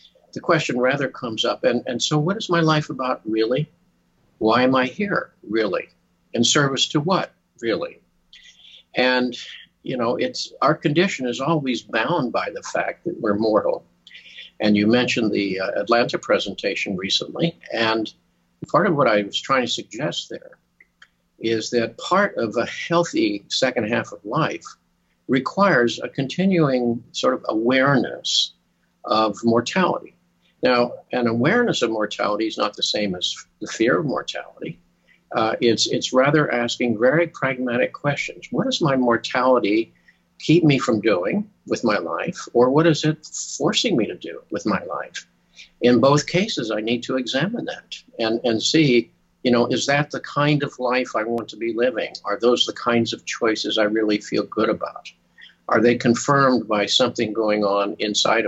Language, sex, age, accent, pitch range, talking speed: English, male, 50-69, American, 115-145 Hz, 165 wpm